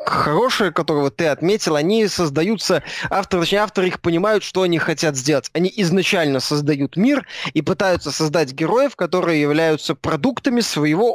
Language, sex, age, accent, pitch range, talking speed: Russian, male, 20-39, native, 160-210 Hz, 150 wpm